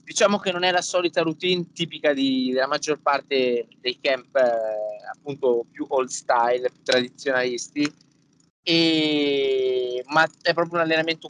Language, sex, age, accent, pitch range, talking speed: Italian, male, 20-39, native, 125-160 Hz, 145 wpm